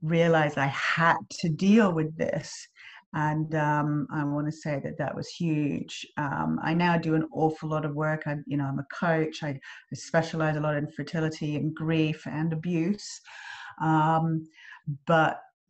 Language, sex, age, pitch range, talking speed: English, female, 40-59, 145-165 Hz, 170 wpm